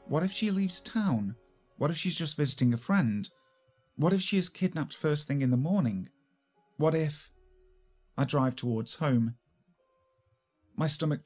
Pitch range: 115-150 Hz